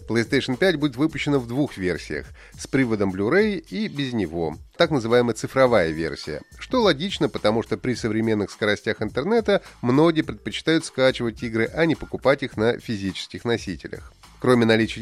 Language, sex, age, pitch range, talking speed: Russian, male, 30-49, 110-160 Hz, 155 wpm